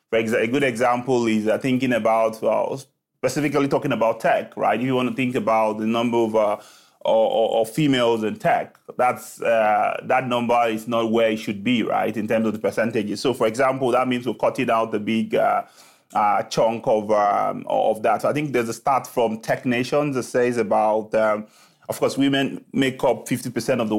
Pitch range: 110-130 Hz